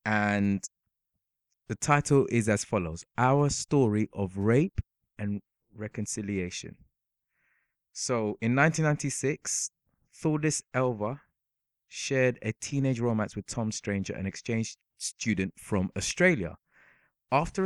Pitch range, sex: 95-130 Hz, male